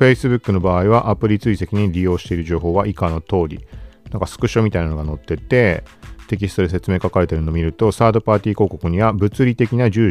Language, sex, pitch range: Japanese, male, 85-110 Hz